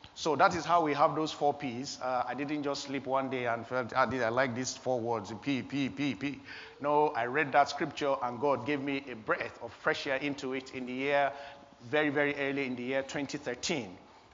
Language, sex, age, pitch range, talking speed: English, male, 50-69, 130-150 Hz, 230 wpm